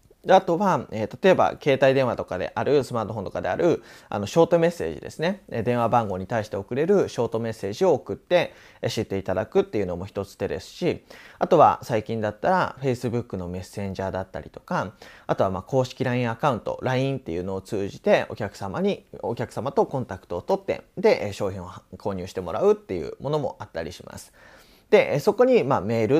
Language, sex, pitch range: Japanese, male, 110-170 Hz